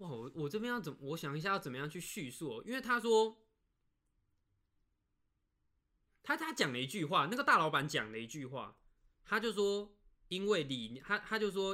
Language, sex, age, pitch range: Chinese, male, 20-39, 125-185 Hz